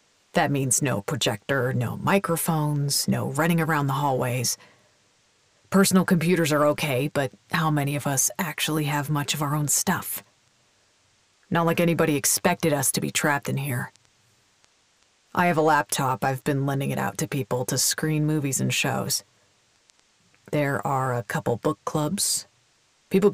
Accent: American